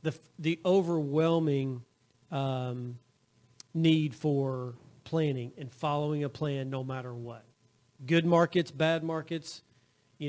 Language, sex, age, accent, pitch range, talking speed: English, male, 40-59, American, 140-165 Hz, 110 wpm